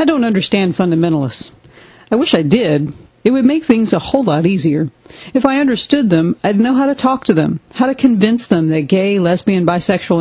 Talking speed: 205 wpm